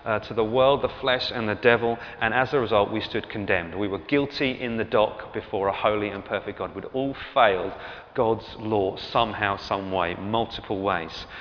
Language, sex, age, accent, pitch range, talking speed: English, male, 30-49, British, 100-130 Hz, 200 wpm